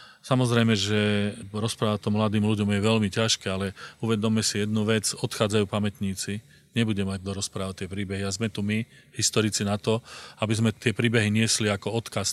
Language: Slovak